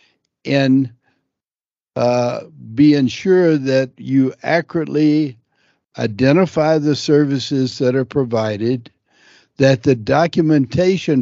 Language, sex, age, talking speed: English, male, 60-79, 85 wpm